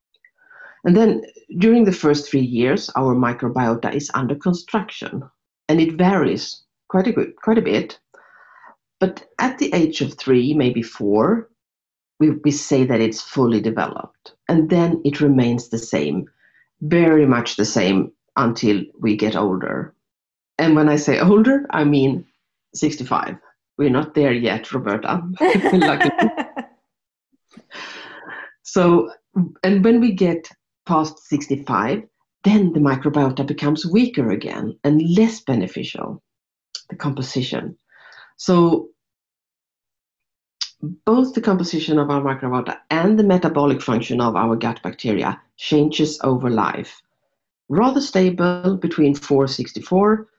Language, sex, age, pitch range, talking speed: English, female, 50-69, 125-185 Hz, 125 wpm